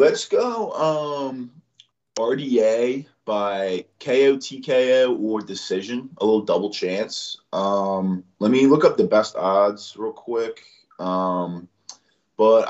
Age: 20-39